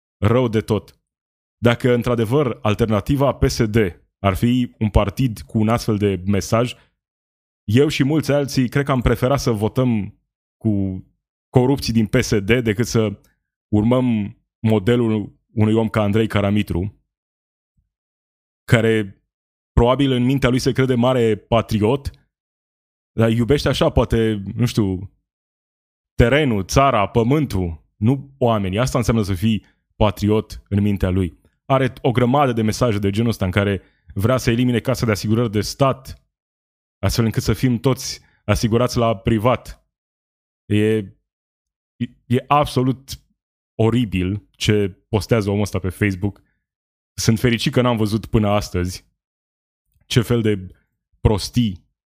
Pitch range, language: 95-120 Hz, Romanian